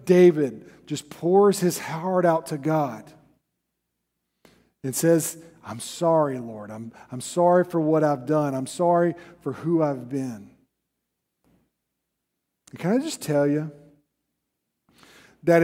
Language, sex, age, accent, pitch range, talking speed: English, male, 50-69, American, 135-195 Hz, 125 wpm